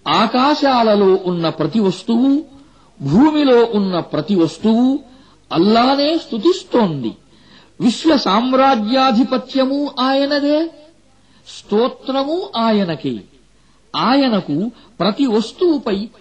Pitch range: 180-275 Hz